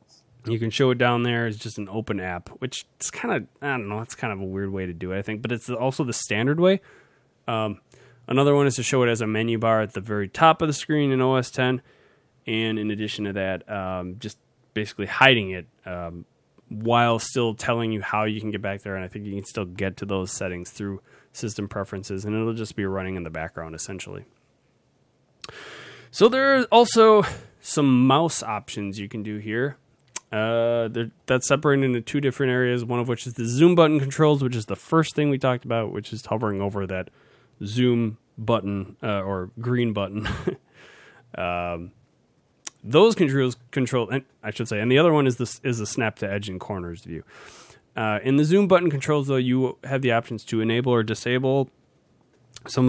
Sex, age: male, 20-39